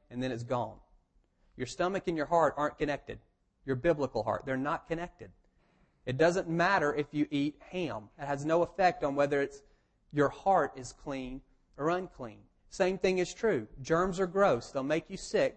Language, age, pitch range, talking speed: English, 40-59, 130-170 Hz, 185 wpm